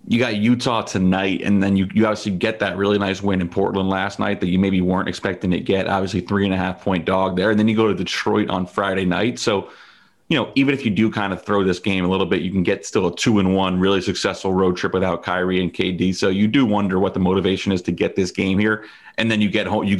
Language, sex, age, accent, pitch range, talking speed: English, male, 30-49, American, 95-105 Hz, 260 wpm